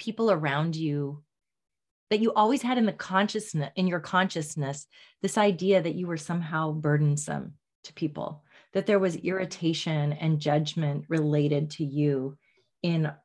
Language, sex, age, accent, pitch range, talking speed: English, female, 30-49, American, 150-185 Hz, 145 wpm